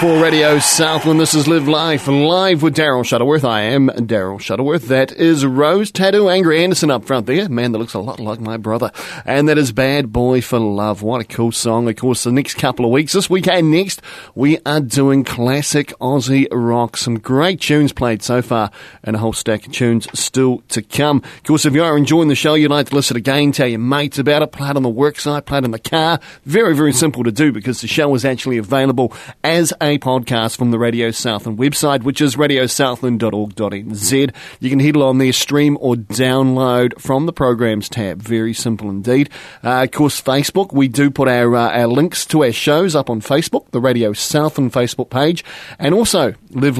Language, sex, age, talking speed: English, male, 40-59, 210 wpm